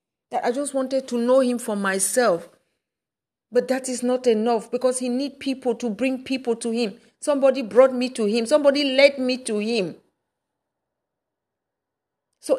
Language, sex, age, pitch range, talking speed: English, female, 40-59, 210-255 Hz, 160 wpm